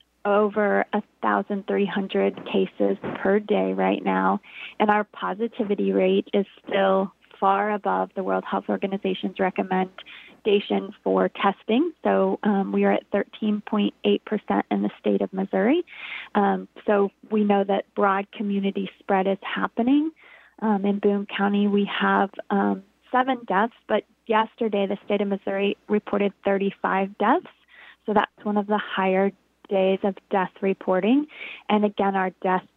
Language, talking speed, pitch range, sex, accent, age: English, 135 wpm, 195-215 Hz, female, American, 20-39